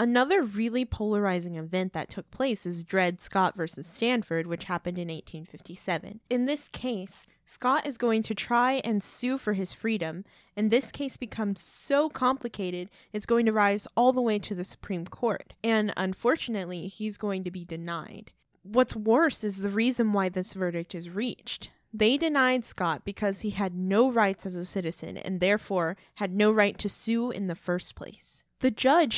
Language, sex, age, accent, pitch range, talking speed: English, female, 20-39, American, 185-235 Hz, 180 wpm